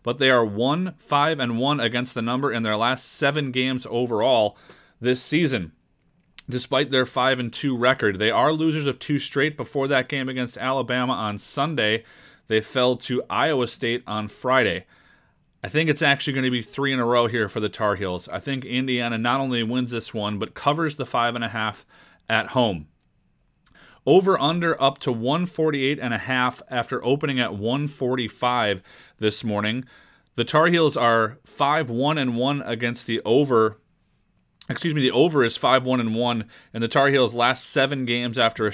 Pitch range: 115-140 Hz